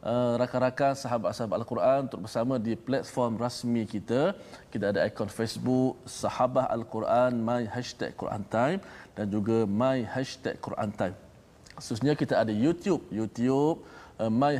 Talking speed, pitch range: 140 wpm, 105-130 Hz